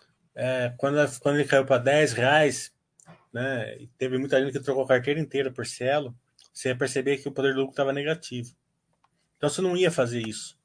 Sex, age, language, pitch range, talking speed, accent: male, 20-39, Portuguese, 125-165 Hz, 195 wpm, Brazilian